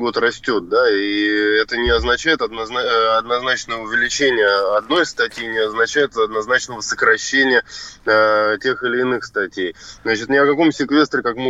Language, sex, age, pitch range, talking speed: Russian, male, 20-39, 115-145 Hz, 140 wpm